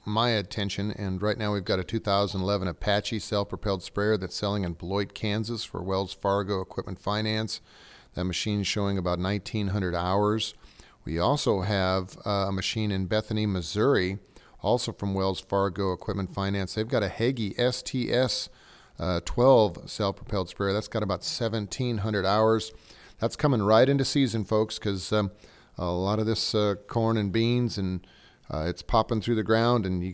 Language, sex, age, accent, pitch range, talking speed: English, male, 40-59, American, 95-115 Hz, 155 wpm